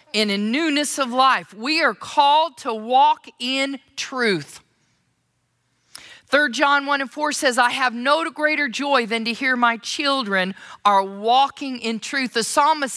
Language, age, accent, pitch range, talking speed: English, 50-69, American, 230-275 Hz, 155 wpm